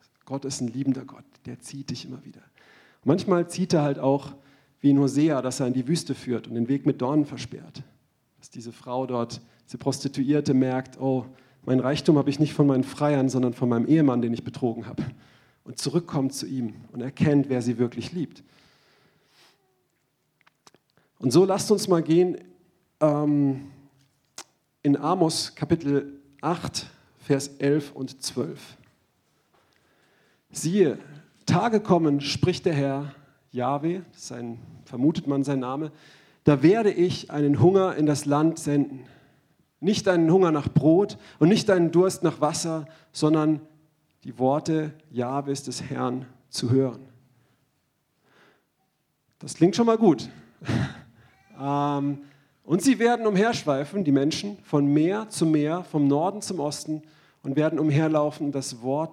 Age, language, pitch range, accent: 40-59, German, 130-160 Hz, German